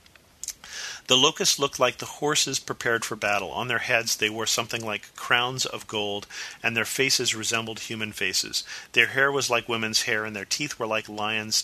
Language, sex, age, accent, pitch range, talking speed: English, male, 40-59, American, 110-125 Hz, 190 wpm